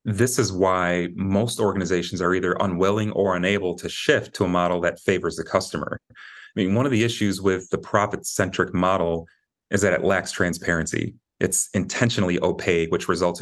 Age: 30-49